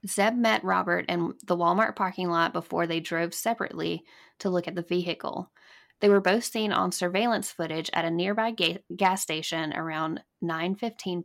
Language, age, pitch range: English, 10-29, 170-215 Hz